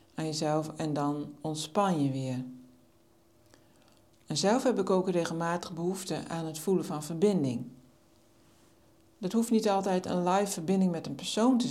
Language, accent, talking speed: Dutch, Dutch, 155 wpm